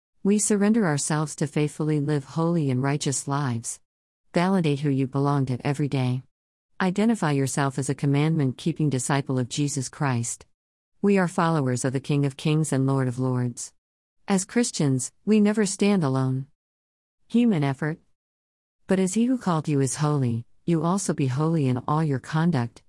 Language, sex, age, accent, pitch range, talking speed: English, female, 50-69, American, 130-165 Hz, 165 wpm